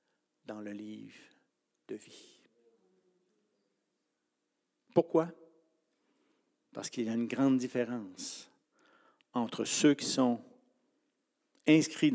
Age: 60-79